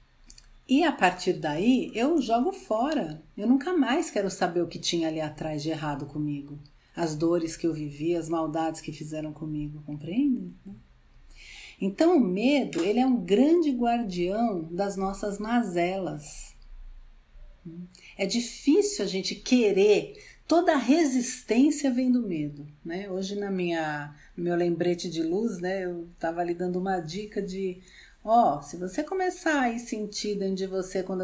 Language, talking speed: Portuguese, 155 wpm